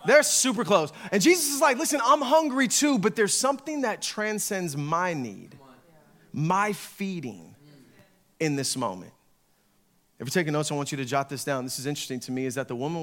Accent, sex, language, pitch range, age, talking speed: American, male, English, 145-235 Hz, 30-49, 200 wpm